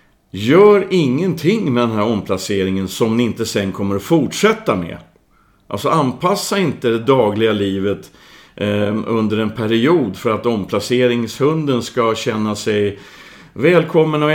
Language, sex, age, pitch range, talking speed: Swedish, male, 50-69, 100-130 Hz, 135 wpm